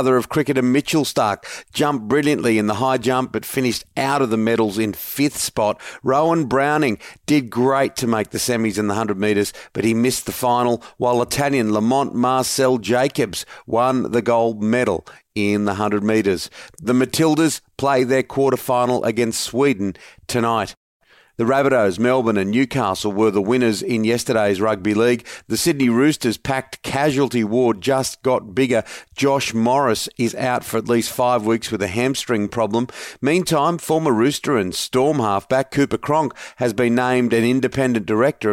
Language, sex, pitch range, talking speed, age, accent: English, male, 115-135 Hz, 165 wpm, 40-59, Australian